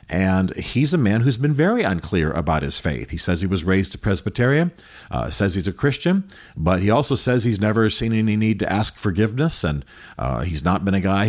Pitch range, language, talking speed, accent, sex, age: 90-115 Hz, English, 225 wpm, American, male, 40-59